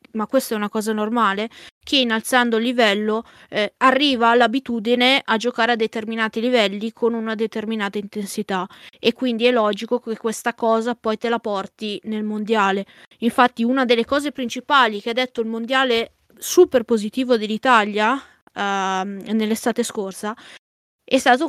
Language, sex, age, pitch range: Italian, female, 20-39, 220-255 Hz